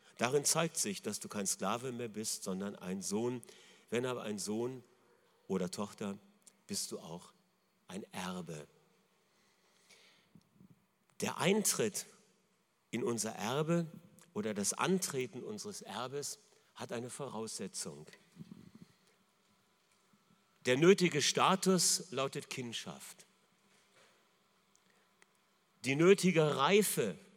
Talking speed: 95 wpm